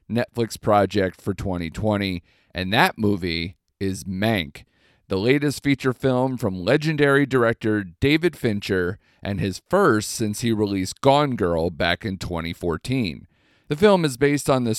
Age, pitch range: 40-59, 95-120 Hz